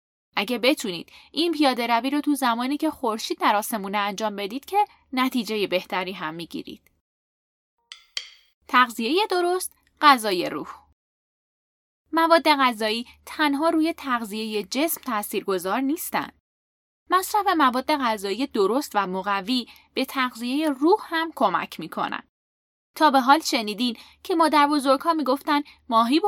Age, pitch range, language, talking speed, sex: 10-29, 210-320 Hz, Persian, 125 wpm, female